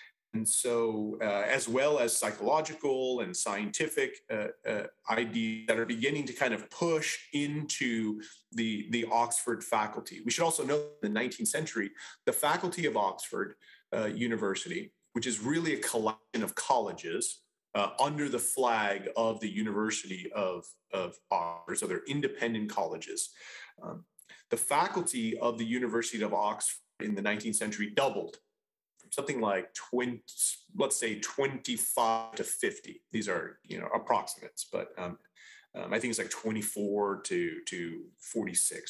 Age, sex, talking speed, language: 30-49, male, 150 wpm, English